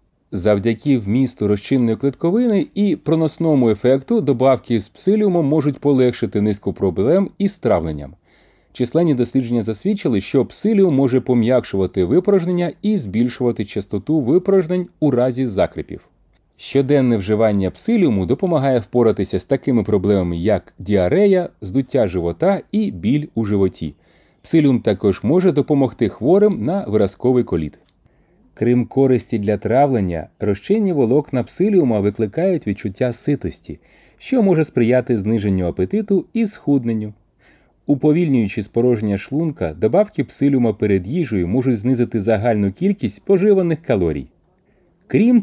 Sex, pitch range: male, 105-165 Hz